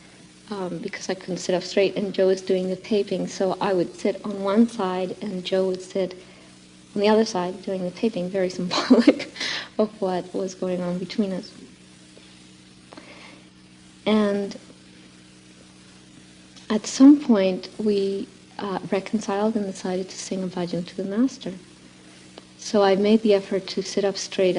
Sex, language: female, English